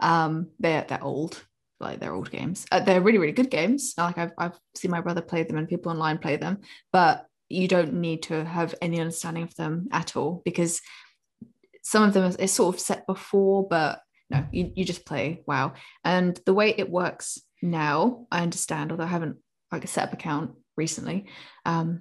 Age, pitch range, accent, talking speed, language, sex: 10-29, 165-190 Hz, British, 195 wpm, English, female